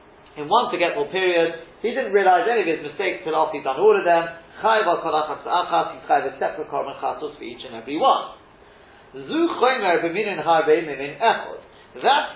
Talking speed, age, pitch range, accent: 135 wpm, 40-59, 160-270 Hz, British